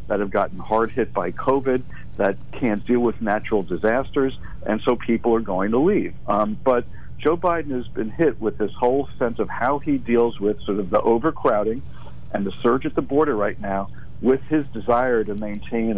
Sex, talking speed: male, 200 wpm